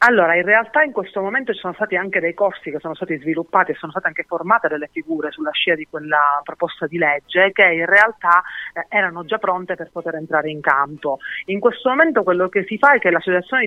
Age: 30-49